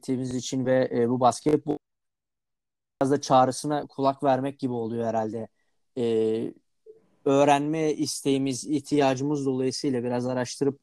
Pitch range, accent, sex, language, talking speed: 130-160 Hz, native, male, Turkish, 110 wpm